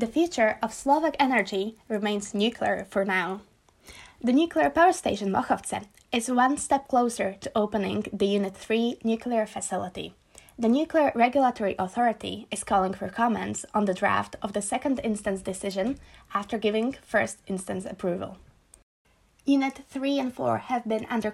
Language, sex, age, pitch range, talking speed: Slovak, female, 20-39, 200-245 Hz, 150 wpm